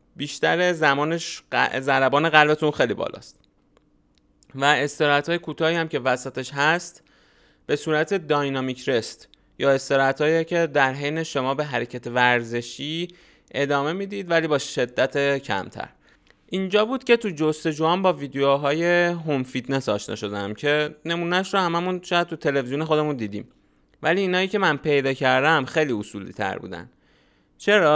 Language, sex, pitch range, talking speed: Persian, male, 125-165 Hz, 135 wpm